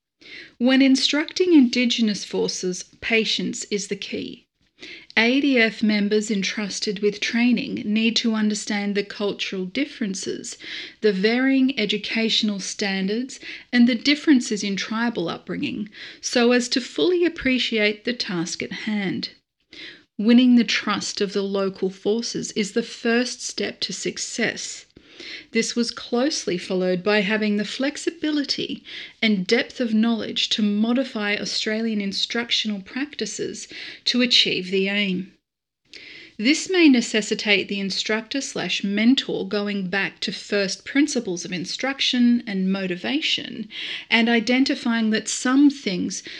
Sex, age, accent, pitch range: female, 40-59, Australian, 205-255 Hz